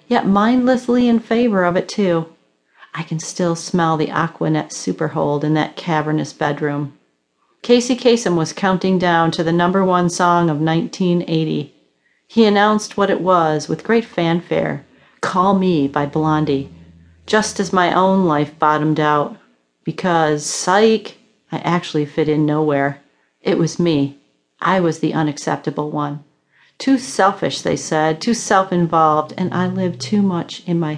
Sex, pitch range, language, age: female, 155-190 Hz, English, 40-59